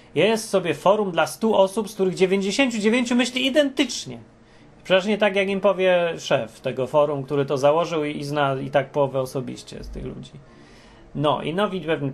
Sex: male